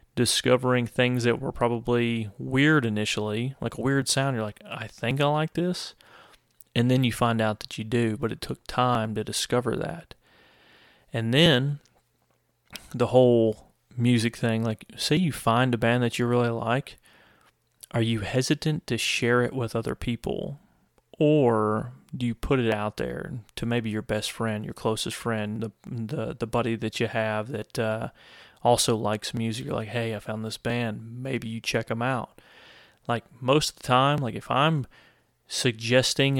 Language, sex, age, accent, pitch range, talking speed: English, male, 30-49, American, 115-125 Hz, 175 wpm